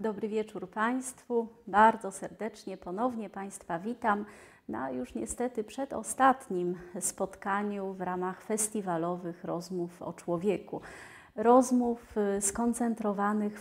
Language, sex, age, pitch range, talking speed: Polish, female, 30-49, 180-215 Hz, 95 wpm